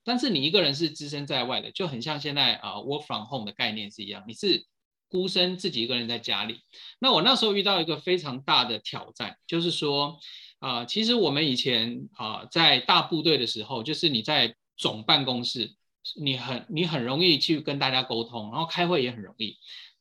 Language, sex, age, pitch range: Chinese, male, 20-39, 125-180 Hz